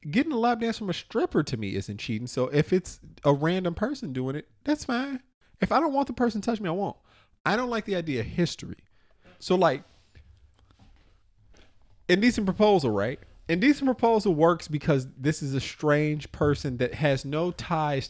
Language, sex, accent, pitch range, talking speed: English, male, American, 105-170 Hz, 190 wpm